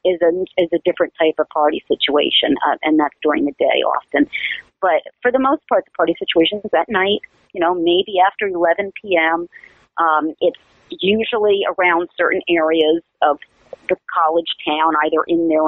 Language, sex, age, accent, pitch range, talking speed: English, female, 40-59, American, 160-205 Hz, 175 wpm